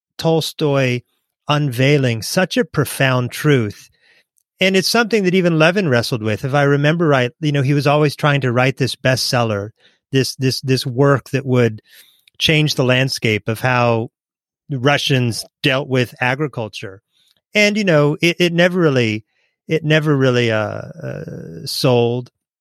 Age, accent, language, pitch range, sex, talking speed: 30-49, American, English, 120-155 Hz, male, 150 wpm